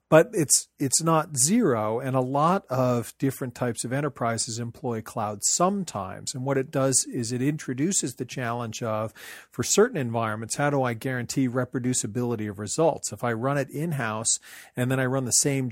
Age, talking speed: 40-59, 180 wpm